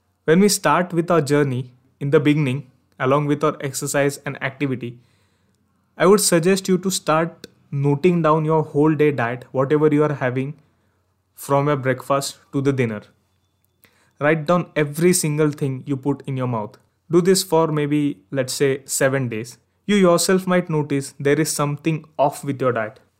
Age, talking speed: 20-39, 170 wpm